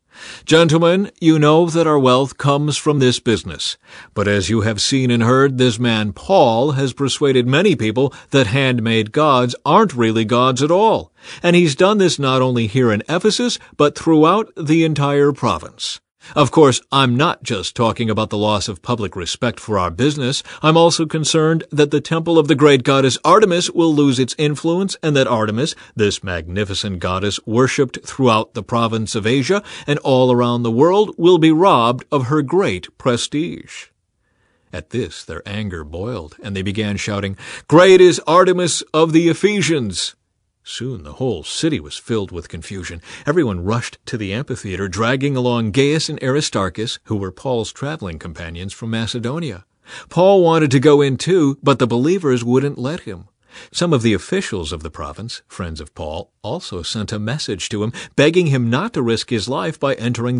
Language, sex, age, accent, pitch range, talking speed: English, male, 50-69, American, 110-150 Hz, 175 wpm